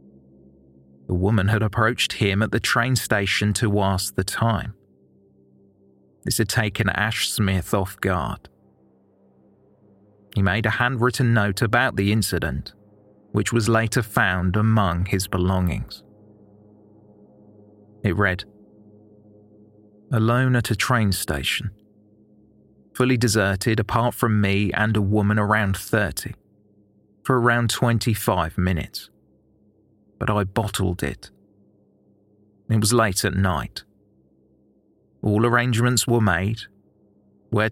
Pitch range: 95-110 Hz